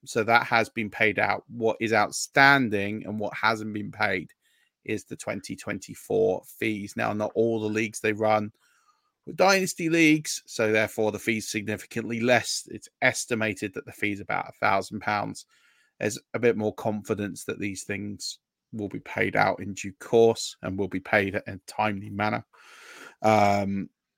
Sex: male